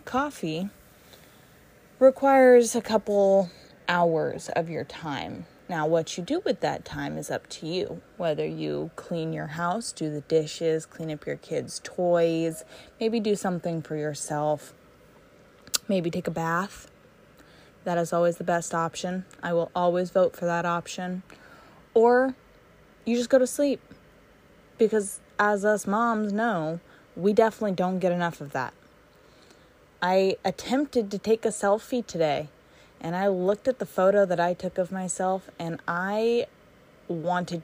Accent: American